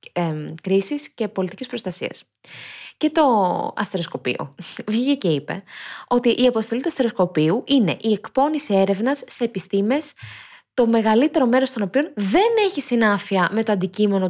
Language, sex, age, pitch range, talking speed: Greek, female, 20-39, 190-265 Hz, 135 wpm